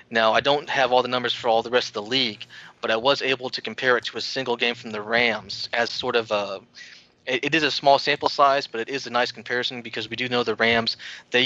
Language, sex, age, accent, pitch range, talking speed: English, male, 30-49, American, 115-130 Hz, 275 wpm